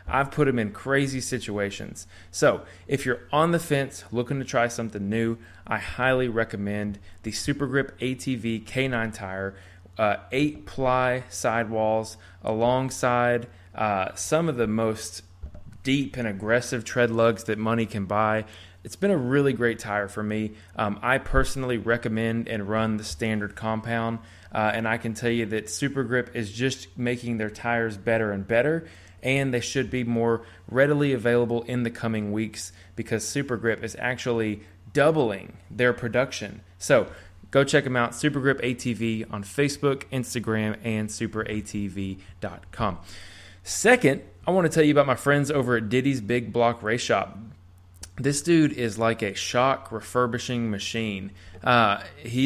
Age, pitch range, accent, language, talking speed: 20-39, 105-130 Hz, American, English, 155 wpm